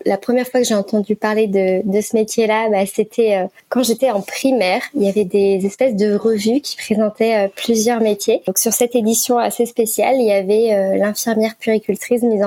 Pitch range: 200-240 Hz